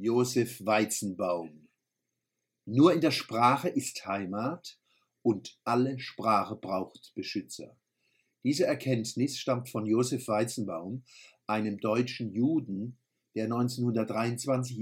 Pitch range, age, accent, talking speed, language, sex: 105-130 Hz, 50-69, German, 95 wpm, German, male